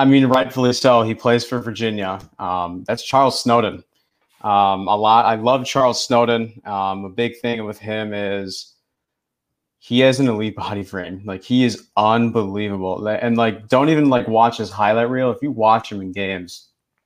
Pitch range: 100-120 Hz